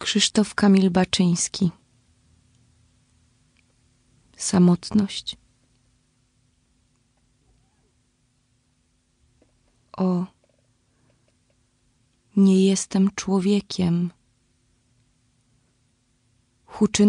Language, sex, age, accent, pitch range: Polish, female, 20-39, native, 125-195 Hz